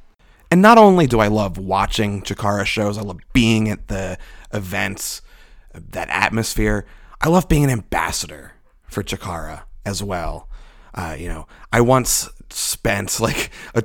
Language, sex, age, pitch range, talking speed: English, male, 30-49, 100-130 Hz, 145 wpm